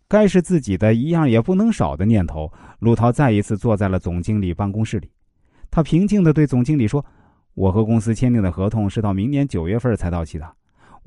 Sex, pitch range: male, 100-150 Hz